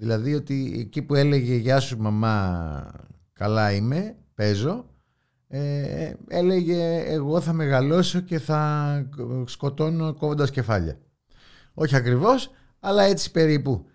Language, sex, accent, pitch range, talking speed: Greek, male, native, 110-180 Hz, 105 wpm